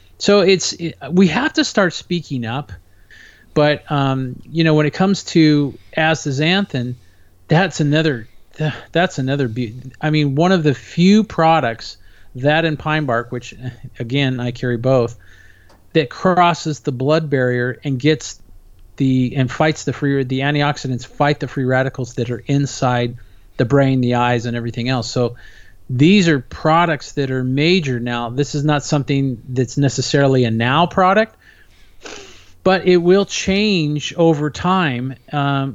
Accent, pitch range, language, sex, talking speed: American, 125-155 Hz, English, male, 150 wpm